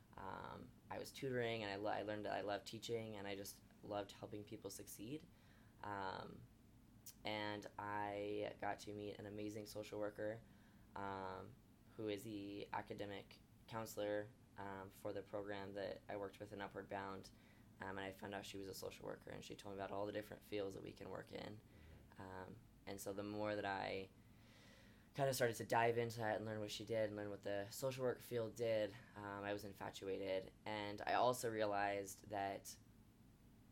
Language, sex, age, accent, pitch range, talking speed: English, female, 10-29, American, 100-115 Hz, 190 wpm